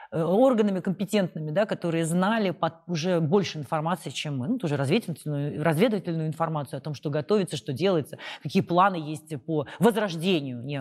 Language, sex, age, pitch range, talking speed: Russian, female, 30-49, 155-205 Hz, 150 wpm